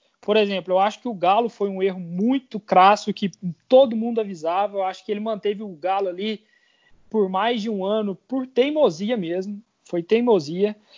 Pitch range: 195-245 Hz